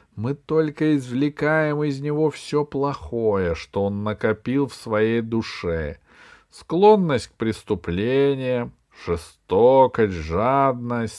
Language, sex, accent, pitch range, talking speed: Russian, male, native, 100-155 Hz, 95 wpm